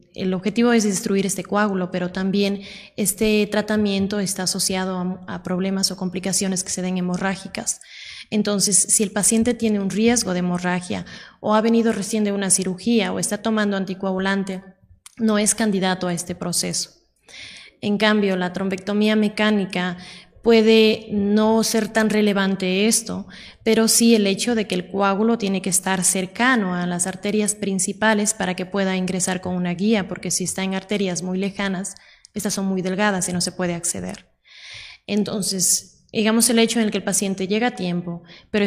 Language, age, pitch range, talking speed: Spanish, 20-39, 185-215 Hz, 170 wpm